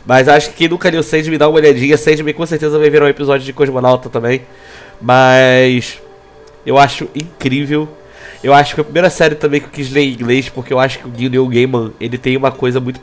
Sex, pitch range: male, 125-175 Hz